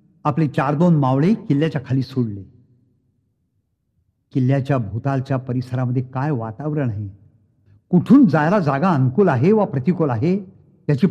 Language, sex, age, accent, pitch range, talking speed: Marathi, male, 60-79, native, 120-185 Hz, 110 wpm